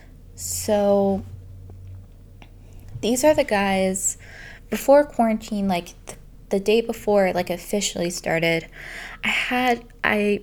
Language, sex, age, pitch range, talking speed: English, female, 20-39, 185-220 Hz, 110 wpm